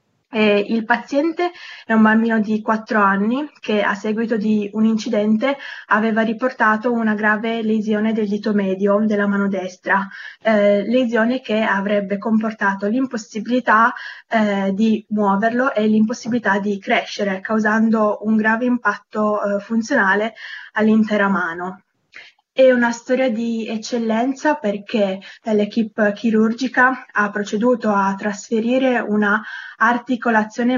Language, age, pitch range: Italian, 20-39, 205-235 Hz